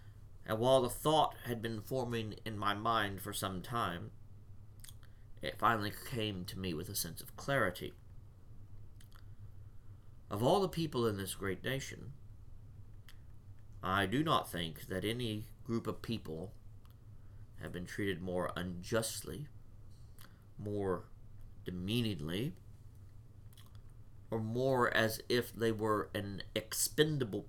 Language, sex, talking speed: English, male, 120 wpm